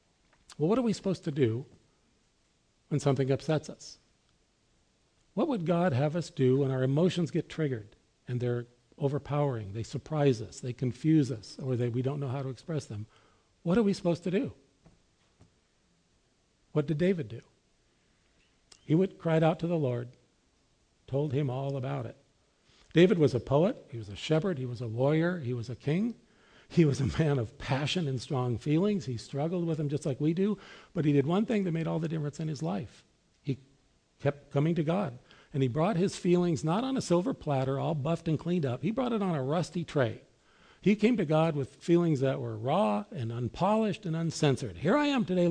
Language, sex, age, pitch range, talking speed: English, male, 50-69, 130-175 Hz, 200 wpm